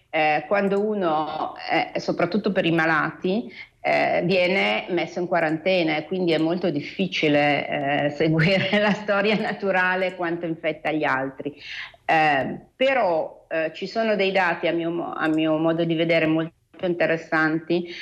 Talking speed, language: 145 wpm, Italian